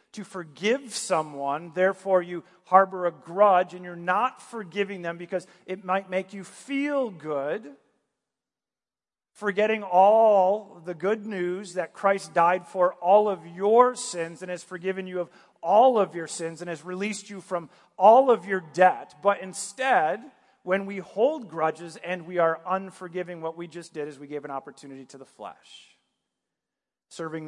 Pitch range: 170-200 Hz